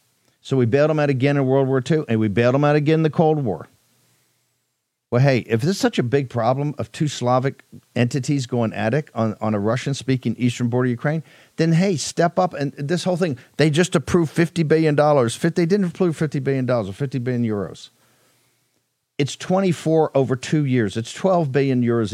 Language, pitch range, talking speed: English, 110-140 Hz, 215 wpm